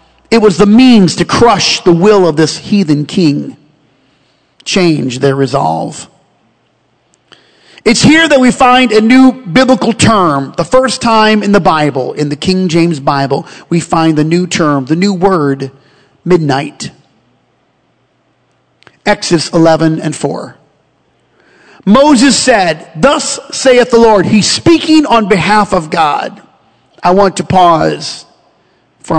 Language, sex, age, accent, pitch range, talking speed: English, male, 40-59, American, 155-215 Hz, 135 wpm